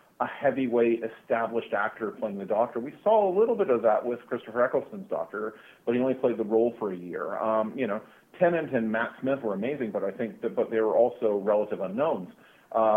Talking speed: 215 wpm